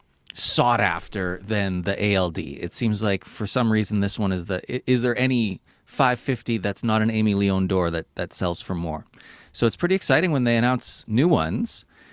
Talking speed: 195 wpm